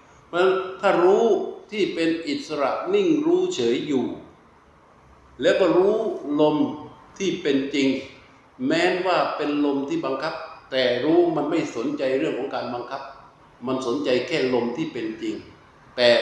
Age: 60-79